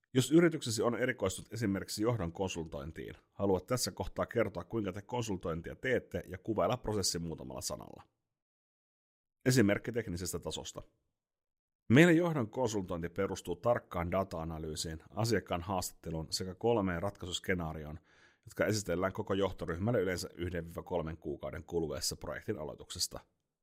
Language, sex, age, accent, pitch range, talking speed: Finnish, male, 30-49, native, 85-110 Hz, 110 wpm